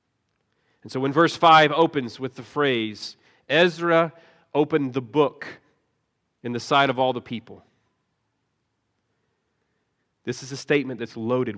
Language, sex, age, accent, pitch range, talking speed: English, male, 40-59, American, 130-175 Hz, 135 wpm